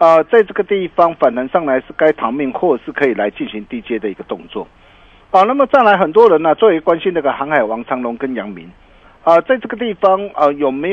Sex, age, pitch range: male, 50-69, 150-215 Hz